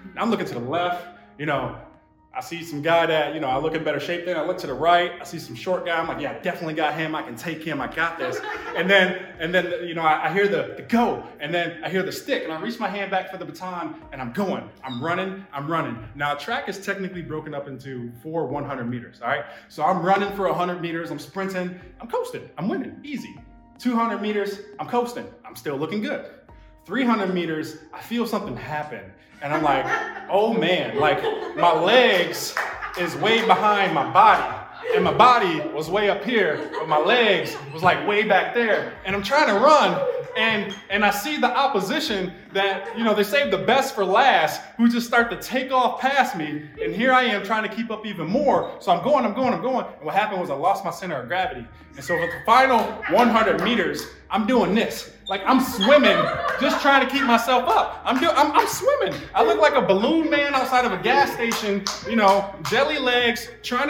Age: 20-39